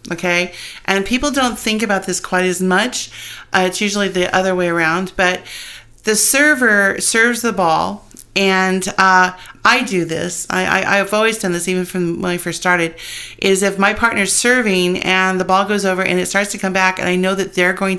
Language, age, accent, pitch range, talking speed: English, 40-59, American, 175-200 Hz, 205 wpm